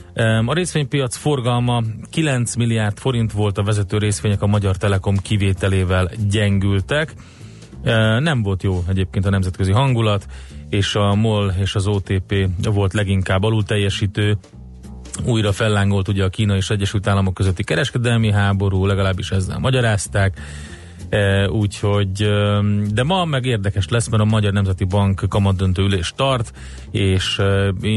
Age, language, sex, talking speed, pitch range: 30-49, Hungarian, male, 130 wpm, 95-110 Hz